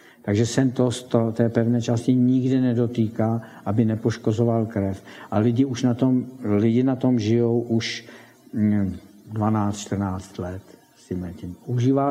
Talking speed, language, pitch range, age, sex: 125 wpm, Czech, 105-125 Hz, 60-79, male